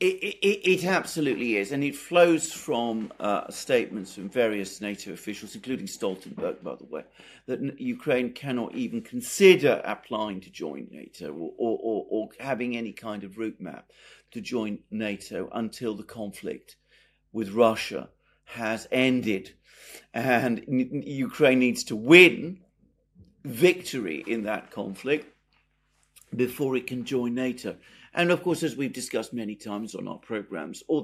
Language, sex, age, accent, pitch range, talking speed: English, male, 50-69, British, 110-160 Hz, 145 wpm